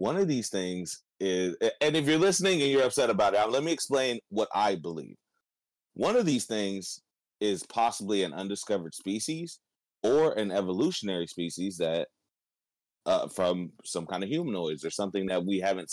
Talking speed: 170 wpm